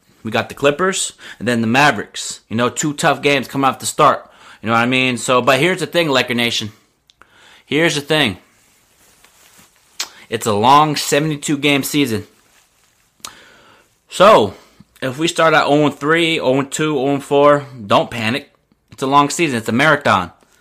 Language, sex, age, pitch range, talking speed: English, male, 30-49, 120-145 Hz, 155 wpm